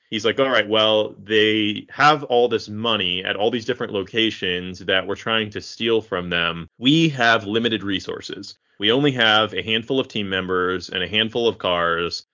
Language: English